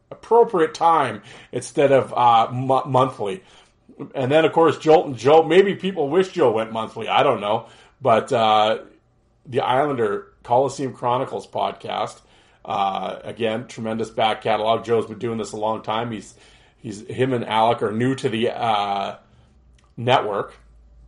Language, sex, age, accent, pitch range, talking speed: English, male, 40-59, American, 110-140 Hz, 150 wpm